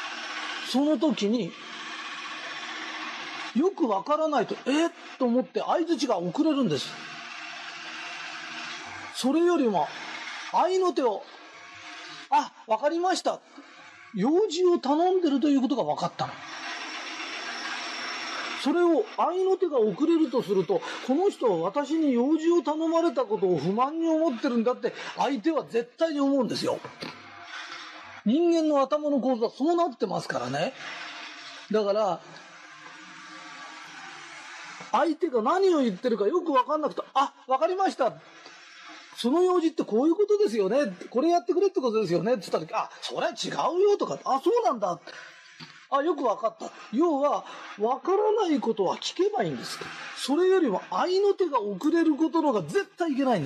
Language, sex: Japanese, male